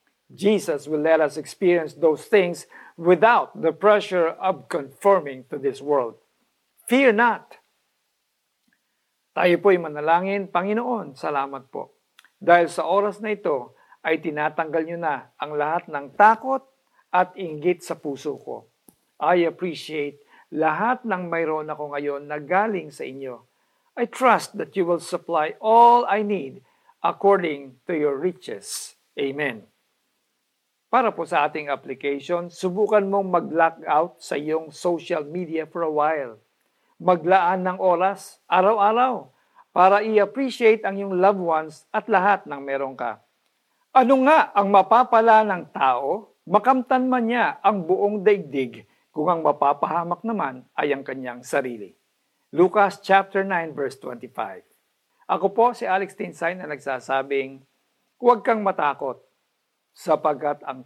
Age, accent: 50-69, native